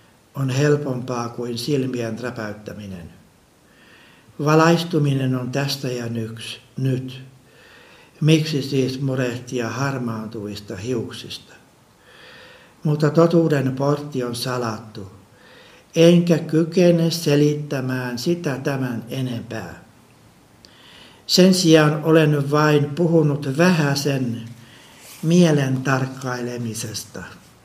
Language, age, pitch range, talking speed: Finnish, 60-79, 120-150 Hz, 75 wpm